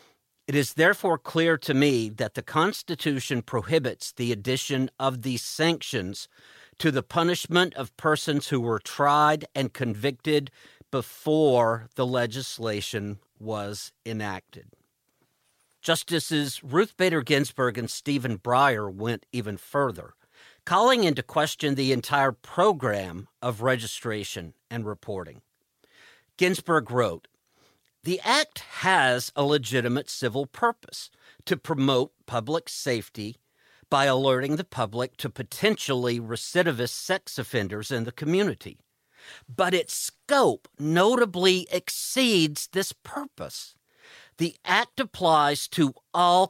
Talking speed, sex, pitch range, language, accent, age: 110 wpm, male, 120-160 Hz, English, American, 50-69